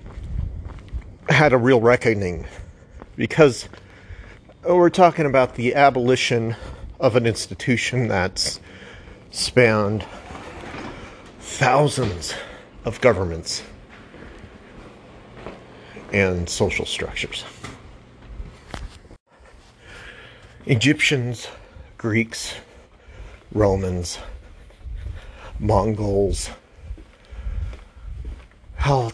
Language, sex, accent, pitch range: English, male, American, 85-115 Hz